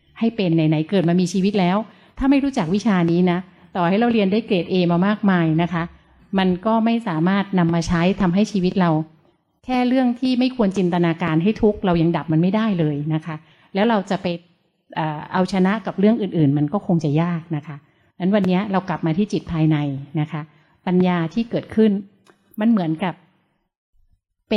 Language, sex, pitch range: Thai, female, 165-210 Hz